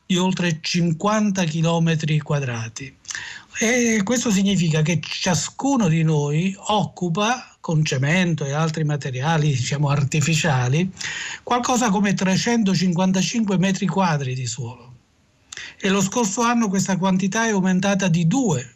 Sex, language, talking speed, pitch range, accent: male, Italian, 115 wpm, 155-200 Hz, native